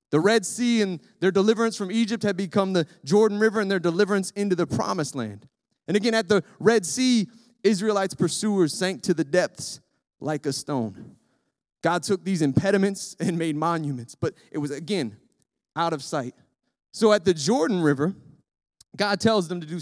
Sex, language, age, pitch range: male, English, 30-49, 150-205 Hz